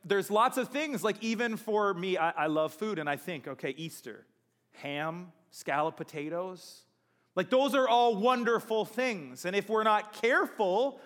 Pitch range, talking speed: 160-225 Hz, 170 wpm